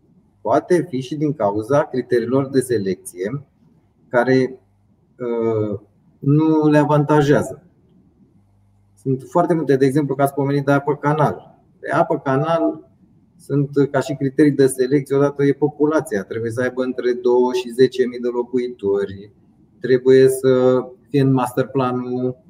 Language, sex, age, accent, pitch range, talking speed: Romanian, male, 30-49, native, 125-150 Hz, 135 wpm